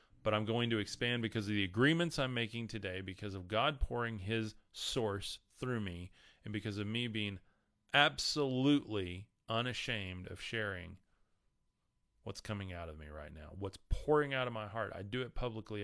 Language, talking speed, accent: English, 175 wpm, American